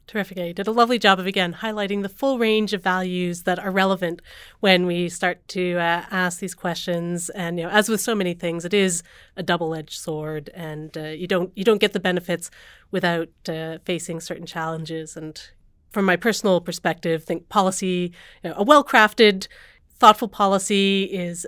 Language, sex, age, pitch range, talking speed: English, female, 30-49, 170-200 Hz, 185 wpm